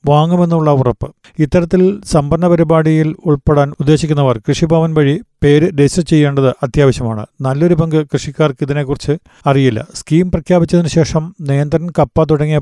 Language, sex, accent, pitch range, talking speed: Malayalam, male, native, 140-160 Hz, 105 wpm